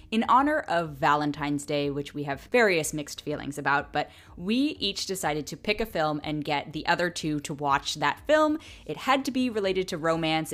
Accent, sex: American, female